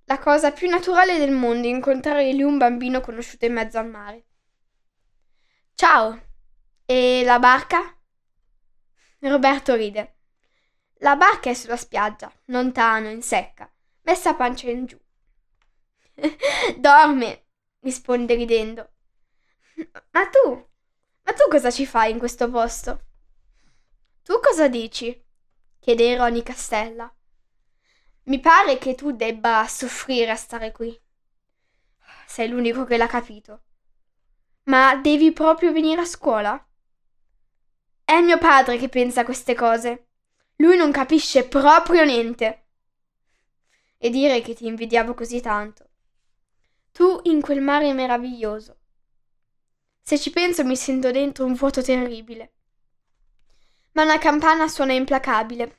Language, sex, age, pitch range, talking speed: Italian, female, 10-29, 235-290 Hz, 120 wpm